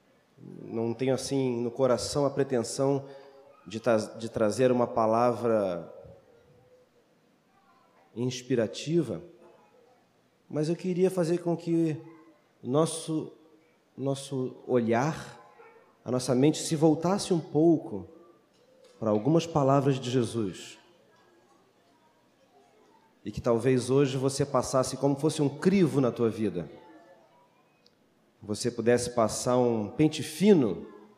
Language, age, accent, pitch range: Portuguese, 40-59, Brazilian, 115-145 Hz